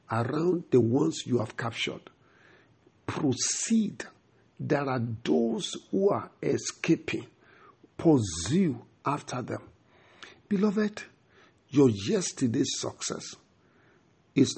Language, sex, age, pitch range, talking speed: English, male, 50-69, 120-165 Hz, 85 wpm